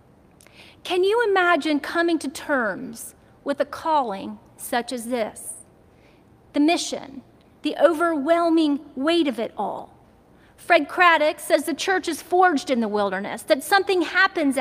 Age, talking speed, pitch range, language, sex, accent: 40-59, 135 wpm, 265-330 Hz, English, female, American